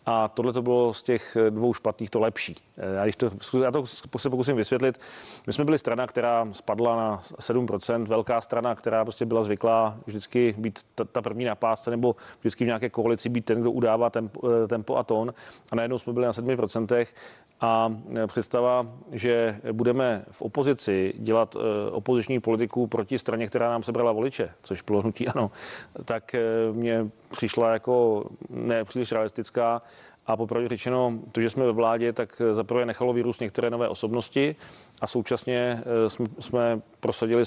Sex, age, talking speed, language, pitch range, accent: male, 30-49, 160 wpm, Czech, 110-125 Hz, native